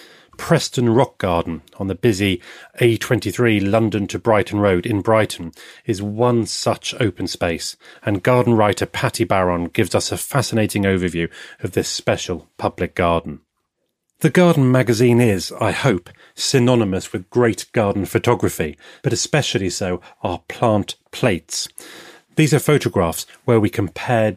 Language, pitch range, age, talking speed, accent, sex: English, 95-125 Hz, 30-49, 140 wpm, British, male